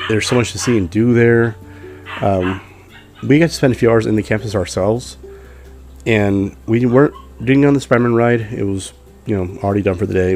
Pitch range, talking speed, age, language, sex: 95-115 Hz, 215 wpm, 30-49, English, male